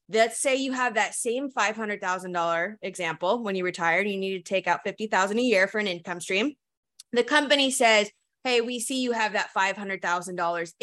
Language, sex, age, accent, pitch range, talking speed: English, female, 20-39, American, 180-235 Hz, 185 wpm